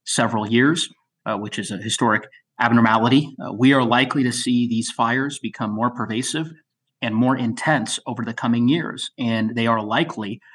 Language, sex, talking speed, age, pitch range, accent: English, male, 170 wpm, 30-49, 115-130 Hz, American